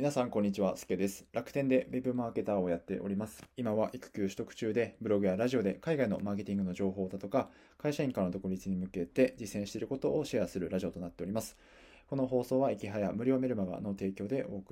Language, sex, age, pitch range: Japanese, male, 20-39, 95-115 Hz